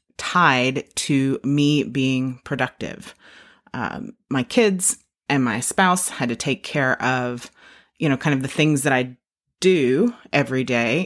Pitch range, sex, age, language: 135-165 Hz, female, 30-49, English